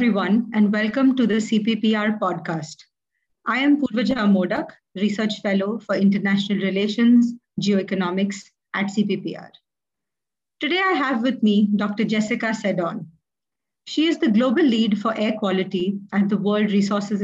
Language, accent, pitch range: English, Indian, 200-235 Hz